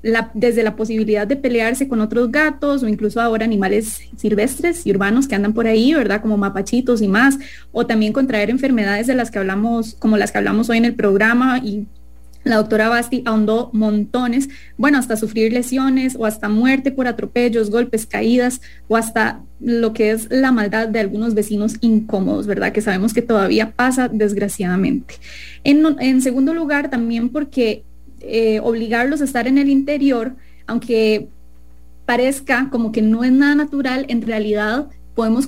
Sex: female